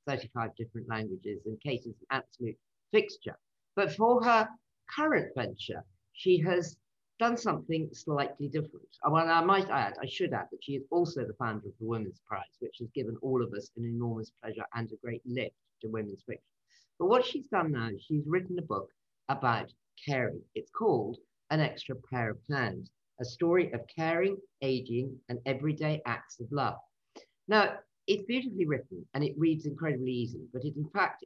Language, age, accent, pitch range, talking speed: English, 50-69, British, 125-180 Hz, 180 wpm